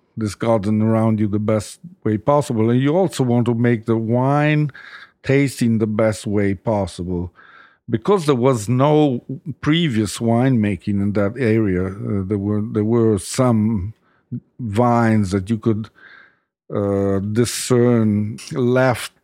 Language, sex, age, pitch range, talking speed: English, male, 50-69, 105-125 Hz, 135 wpm